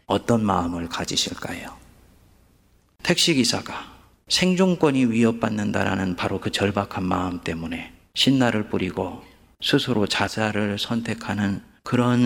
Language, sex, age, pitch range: Korean, male, 40-59, 90-120 Hz